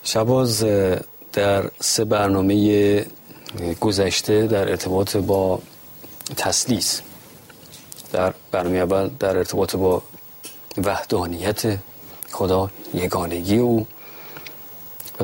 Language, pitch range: Persian, 95-120 Hz